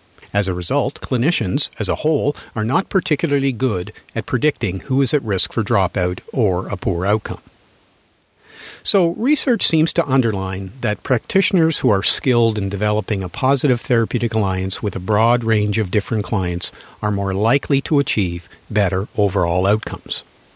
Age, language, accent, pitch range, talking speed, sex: 50-69, English, American, 100-135 Hz, 160 wpm, male